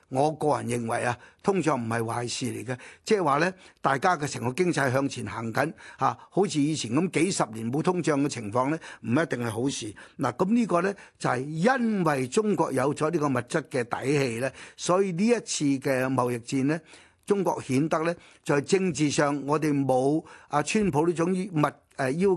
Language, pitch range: Chinese, 130-180 Hz